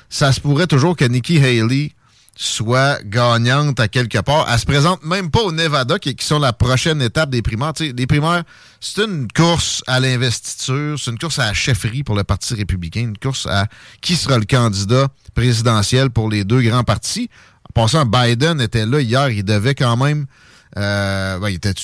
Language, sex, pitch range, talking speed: French, male, 110-140 Hz, 200 wpm